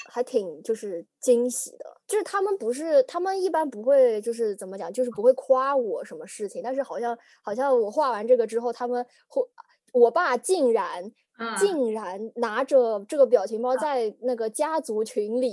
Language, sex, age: Chinese, female, 20-39